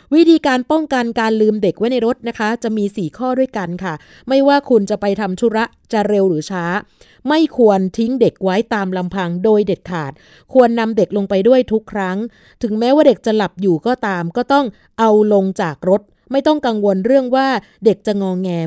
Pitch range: 190-240 Hz